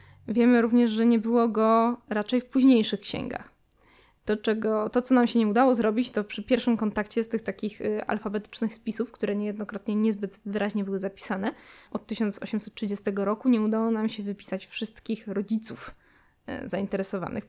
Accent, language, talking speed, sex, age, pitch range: native, Polish, 150 wpm, female, 10-29, 205-230 Hz